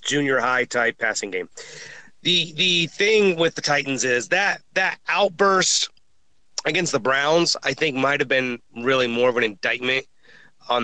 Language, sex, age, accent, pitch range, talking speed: English, male, 30-49, American, 125-165 Hz, 160 wpm